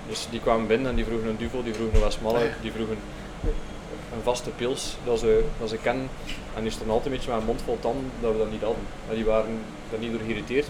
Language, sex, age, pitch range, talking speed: Dutch, male, 20-39, 110-125 Hz, 250 wpm